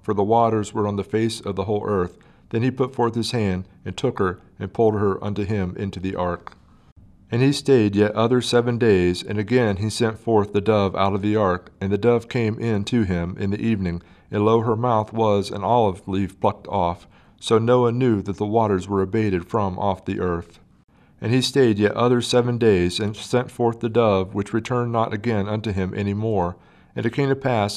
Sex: male